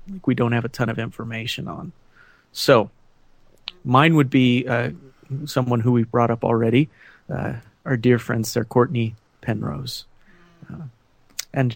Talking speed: 150 wpm